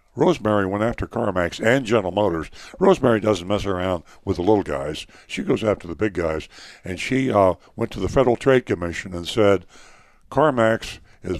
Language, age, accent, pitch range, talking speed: English, 60-79, American, 90-110 Hz, 180 wpm